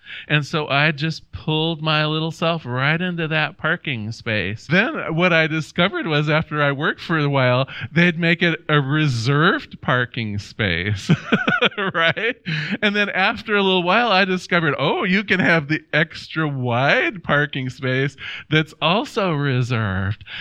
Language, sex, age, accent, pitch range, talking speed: English, male, 40-59, American, 130-180 Hz, 155 wpm